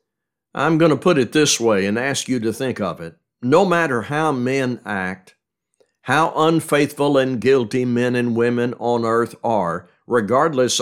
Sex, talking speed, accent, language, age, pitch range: male, 165 wpm, American, English, 60-79, 105-135 Hz